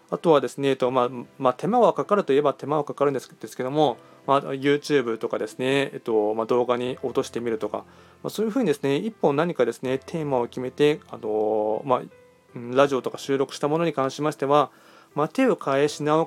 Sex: male